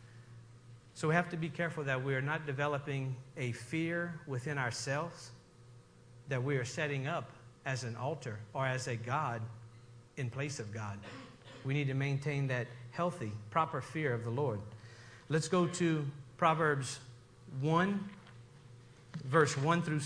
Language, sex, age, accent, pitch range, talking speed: English, male, 50-69, American, 120-170 Hz, 150 wpm